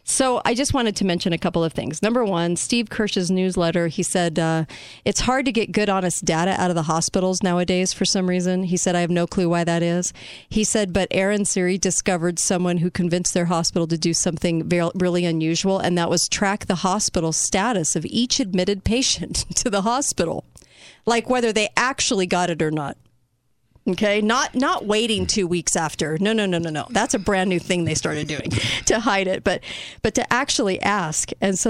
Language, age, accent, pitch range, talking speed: English, 40-59, American, 170-215 Hz, 210 wpm